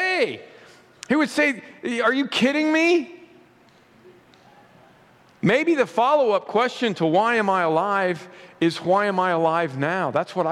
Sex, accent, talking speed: male, American, 135 wpm